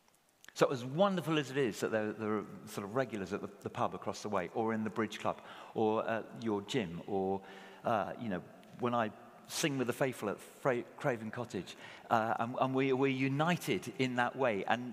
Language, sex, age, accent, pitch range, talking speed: English, male, 50-69, British, 105-140 Hz, 205 wpm